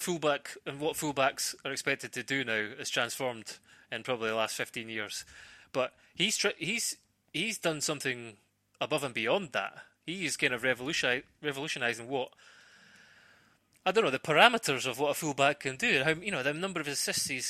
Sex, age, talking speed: male, 20-39, 180 wpm